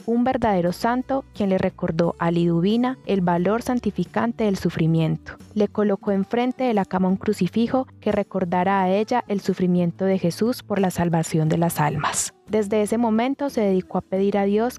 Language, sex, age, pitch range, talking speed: Spanish, female, 20-39, 180-220 Hz, 180 wpm